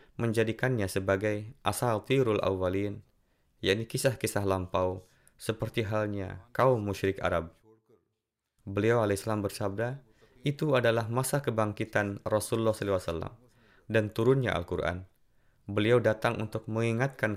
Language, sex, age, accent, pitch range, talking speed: Indonesian, male, 20-39, native, 100-125 Hz, 100 wpm